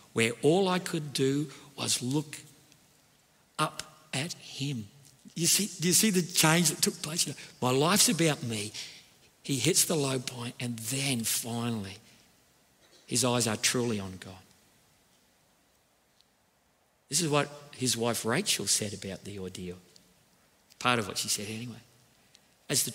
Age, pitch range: 50-69, 110-160 Hz